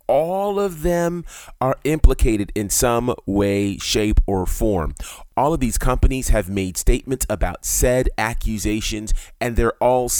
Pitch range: 95-130 Hz